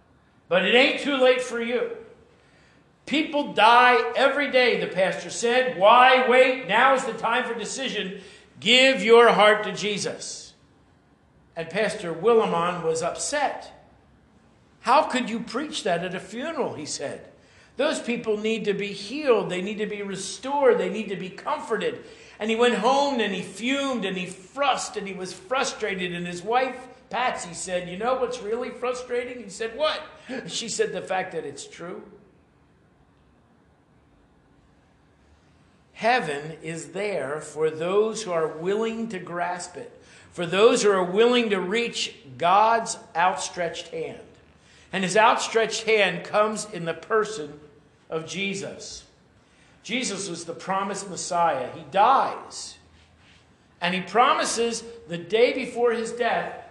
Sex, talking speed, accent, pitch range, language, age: male, 145 wpm, American, 185-250 Hz, English, 50-69